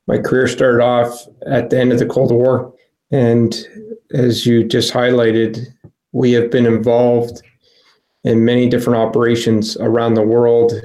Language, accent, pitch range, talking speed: English, American, 115-120 Hz, 150 wpm